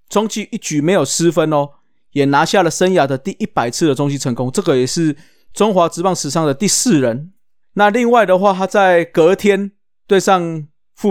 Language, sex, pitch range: Chinese, male, 135-175 Hz